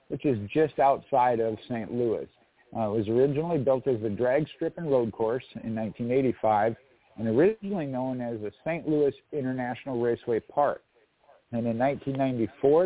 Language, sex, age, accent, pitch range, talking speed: English, male, 50-69, American, 115-140 Hz, 160 wpm